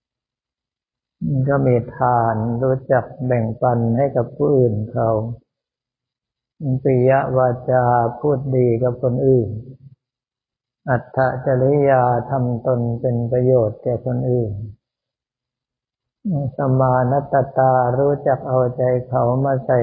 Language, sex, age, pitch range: Thai, male, 60-79, 120-130 Hz